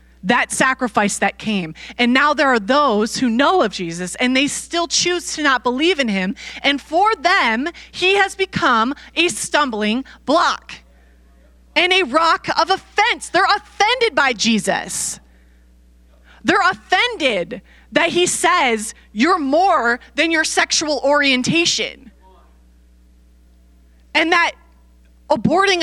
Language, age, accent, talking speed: English, 20-39, American, 125 wpm